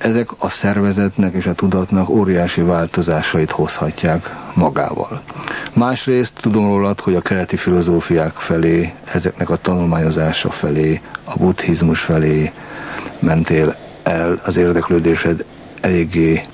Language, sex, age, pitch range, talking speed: Hungarian, male, 50-69, 85-100 Hz, 110 wpm